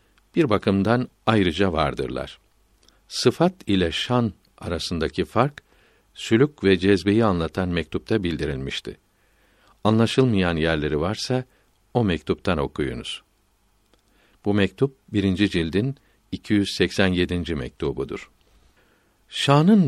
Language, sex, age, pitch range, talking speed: Turkish, male, 60-79, 90-120 Hz, 85 wpm